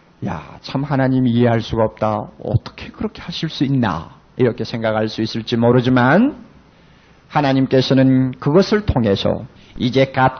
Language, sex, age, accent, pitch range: Korean, male, 40-59, native, 130-205 Hz